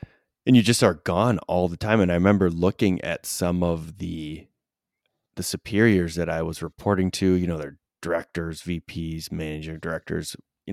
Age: 30-49